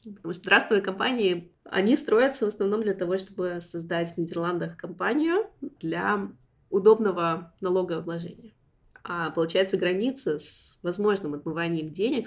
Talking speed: 120 wpm